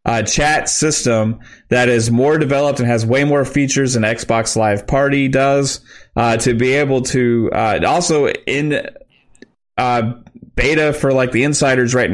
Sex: male